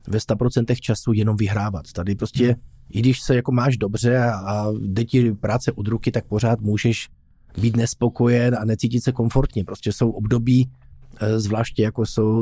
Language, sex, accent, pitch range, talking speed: Czech, male, native, 110-130 Hz, 170 wpm